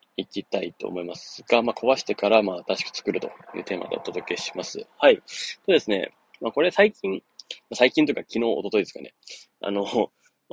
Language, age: Japanese, 20-39